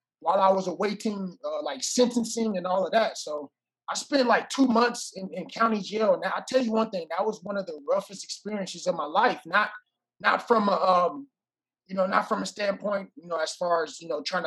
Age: 20-39